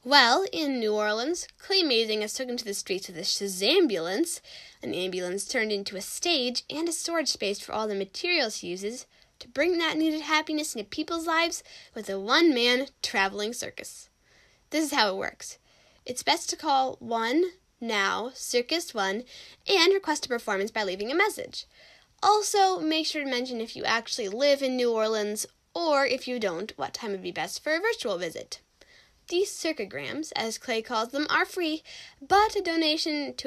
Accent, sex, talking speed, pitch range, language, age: American, female, 175 wpm, 220-335 Hz, English, 10-29